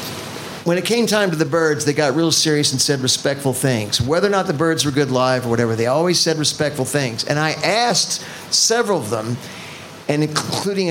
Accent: American